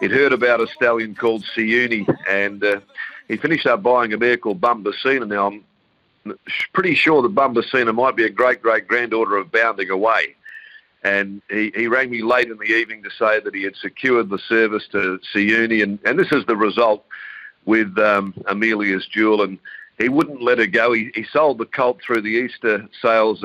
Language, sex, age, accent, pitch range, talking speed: English, male, 50-69, Australian, 100-120 Hz, 190 wpm